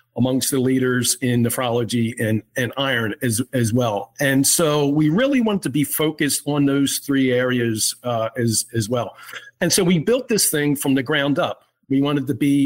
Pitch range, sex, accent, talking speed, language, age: 130-165 Hz, male, American, 195 wpm, English, 50-69